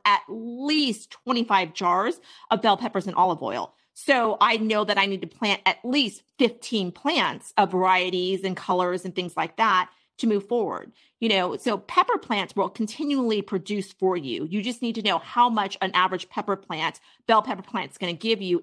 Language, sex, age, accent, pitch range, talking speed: English, female, 40-59, American, 175-210 Hz, 200 wpm